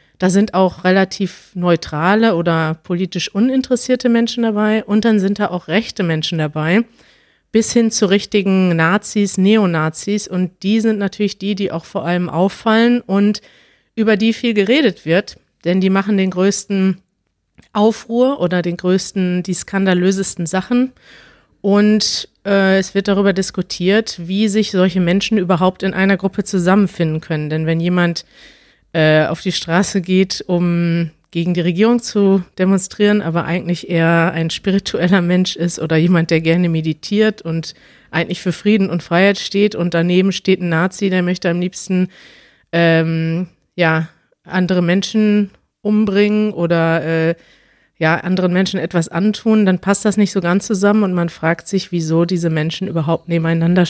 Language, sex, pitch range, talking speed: German, female, 170-200 Hz, 150 wpm